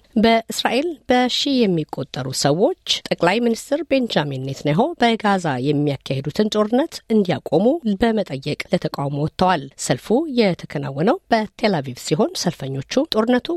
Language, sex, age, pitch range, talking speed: Amharic, female, 50-69, 145-220 Hz, 95 wpm